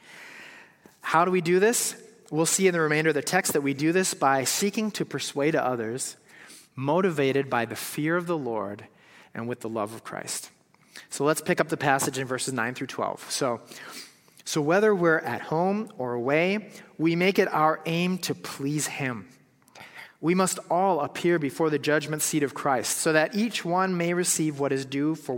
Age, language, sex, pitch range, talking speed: 30-49, English, male, 130-170 Hz, 195 wpm